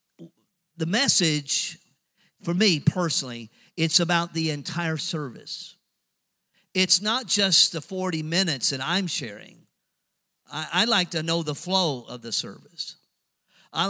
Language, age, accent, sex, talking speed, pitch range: English, 50-69, American, male, 130 wpm, 145-185 Hz